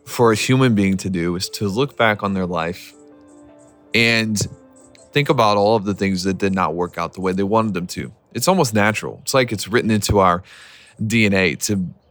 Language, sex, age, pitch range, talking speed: English, male, 20-39, 100-130 Hz, 210 wpm